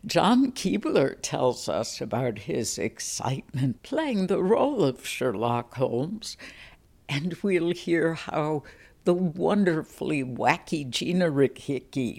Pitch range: 125-175 Hz